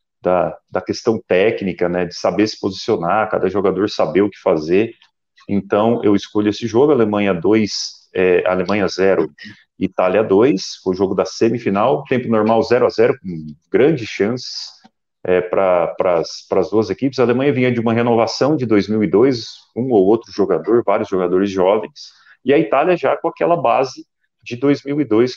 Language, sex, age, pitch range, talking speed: Portuguese, male, 40-59, 100-130 Hz, 160 wpm